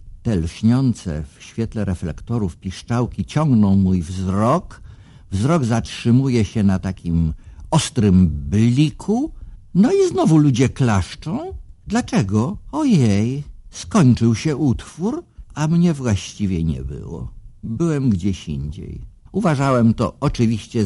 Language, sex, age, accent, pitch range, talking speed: Polish, male, 50-69, native, 95-130 Hz, 105 wpm